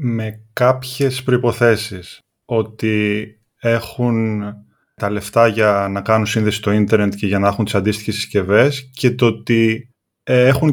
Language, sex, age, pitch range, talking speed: Greek, male, 20-39, 110-140 Hz, 135 wpm